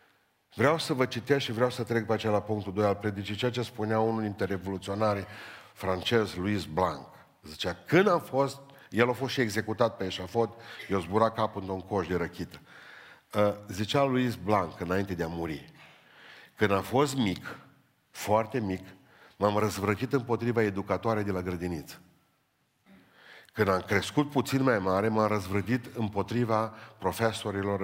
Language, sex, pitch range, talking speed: Romanian, male, 95-115 Hz, 155 wpm